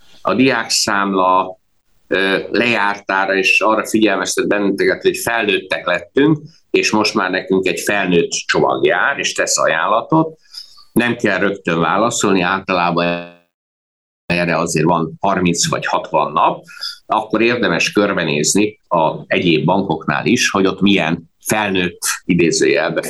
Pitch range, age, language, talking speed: 85-105 Hz, 50-69, Hungarian, 115 wpm